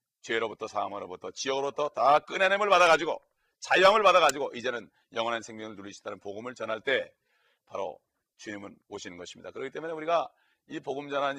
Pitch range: 120-165 Hz